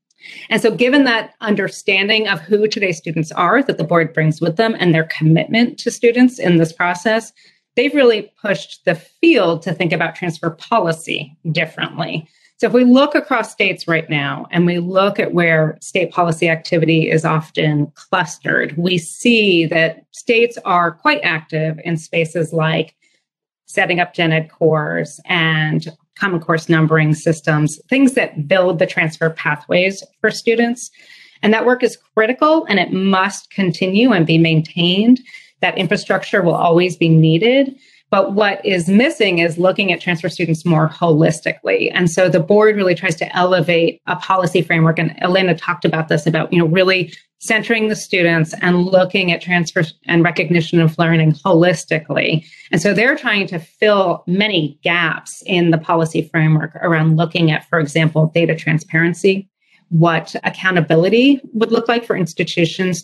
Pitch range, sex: 165-210 Hz, female